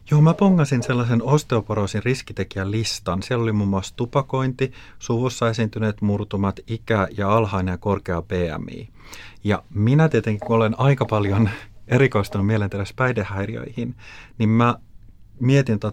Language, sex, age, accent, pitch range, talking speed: Finnish, male, 30-49, native, 100-125 Hz, 130 wpm